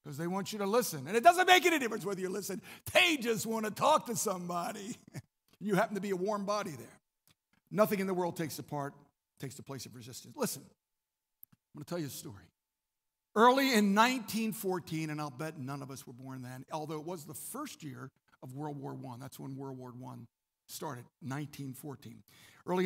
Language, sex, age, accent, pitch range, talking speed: English, male, 50-69, American, 140-210 Hz, 210 wpm